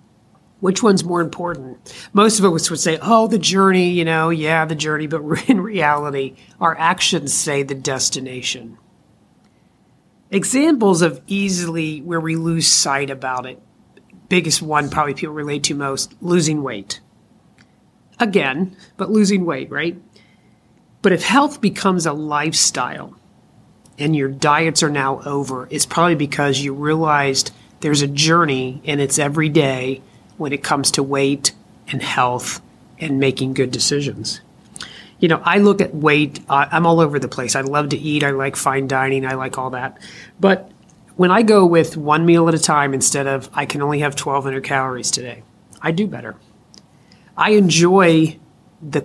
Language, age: English, 40-59